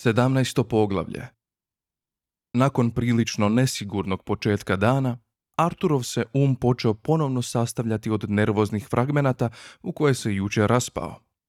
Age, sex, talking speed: 30-49, male, 110 wpm